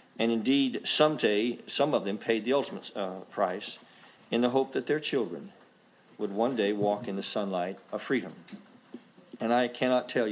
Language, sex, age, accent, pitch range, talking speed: English, male, 50-69, American, 100-120 Hz, 180 wpm